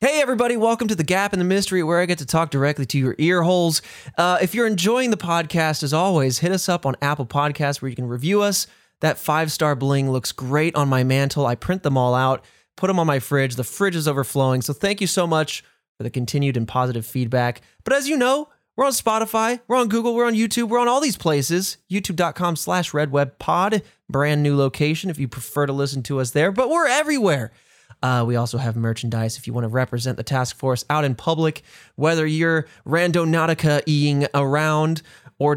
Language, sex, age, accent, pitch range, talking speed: English, male, 20-39, American, 130-185 Hz, 215 wpm